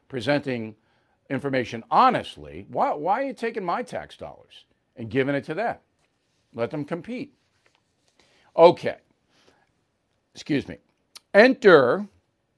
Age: 50-69